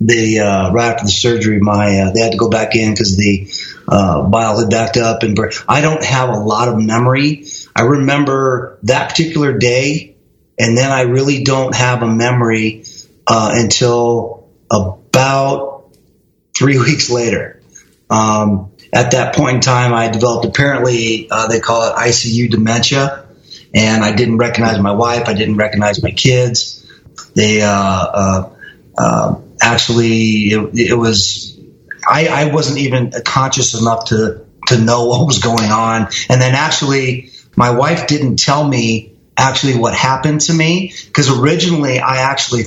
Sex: male